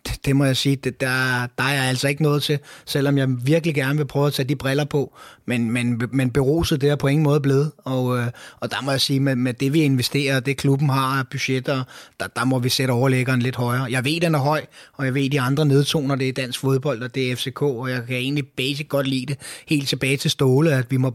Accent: native